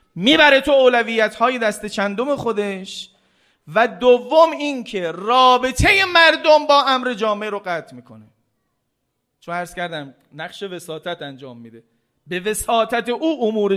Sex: male